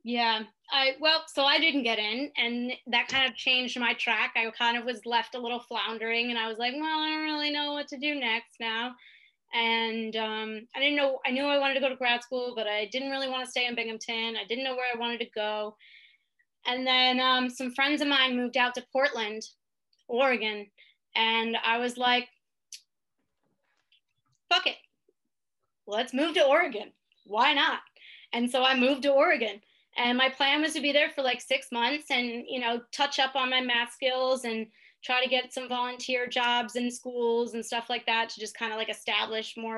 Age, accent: 20-39, American